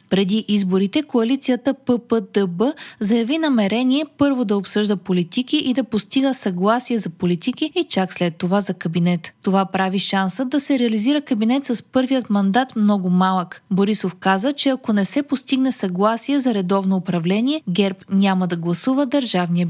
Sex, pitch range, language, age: female, 195-260 Hz, Bulgarian, 20-39